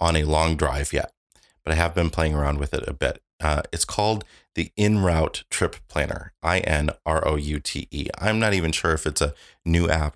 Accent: American